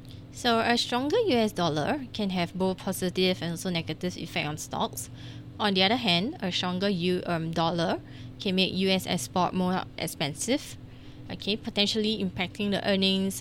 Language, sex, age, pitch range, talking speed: English, female, 20-39, 155-200 Hz, 155 wpm